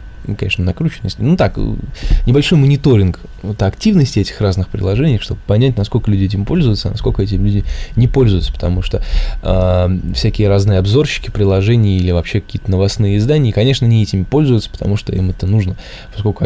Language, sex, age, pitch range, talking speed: Russian, male, 20-39, 90-115 Hz, 165 wpm